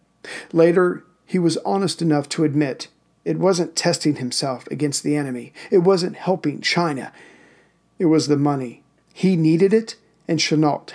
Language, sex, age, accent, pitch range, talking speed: English, male, 50-69, American, 150-175 Hz, 150 wpm